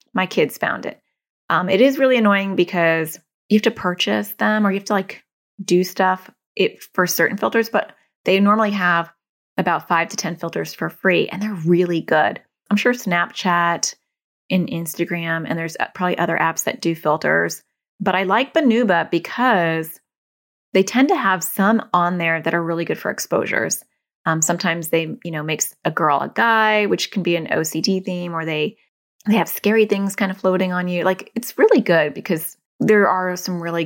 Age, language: 20-39, English